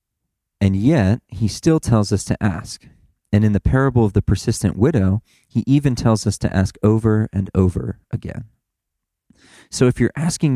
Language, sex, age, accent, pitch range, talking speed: English, male, 40-59, American, 95-115 Hz, 170 wpm